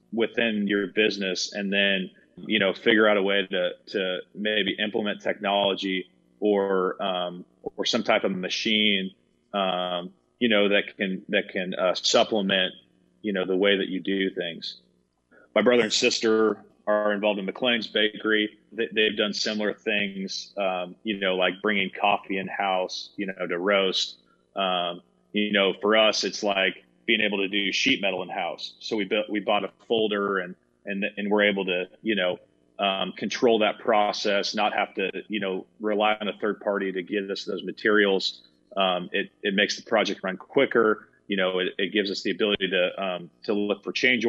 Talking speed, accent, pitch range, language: 185 wpm, American, 90-105 Hz, English